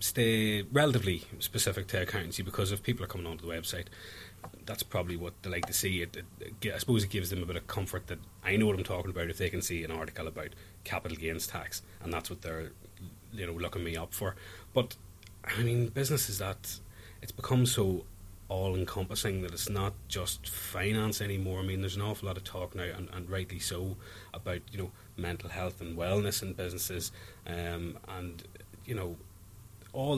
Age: 30-49